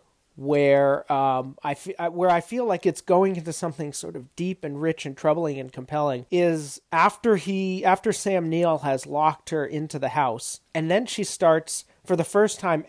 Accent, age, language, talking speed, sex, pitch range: American, 40-59, English, 190 wpm, male, 140-175 Hz